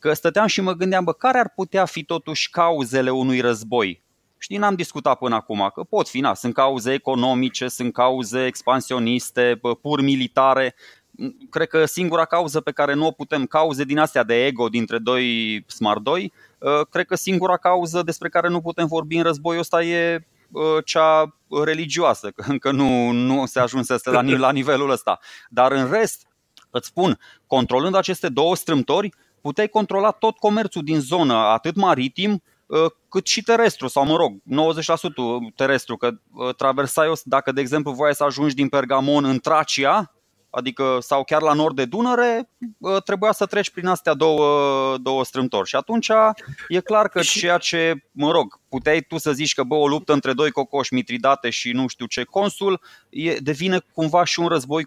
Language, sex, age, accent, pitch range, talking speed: Romanian, male, 20-39, native, 130-175 Hz, 170 wpm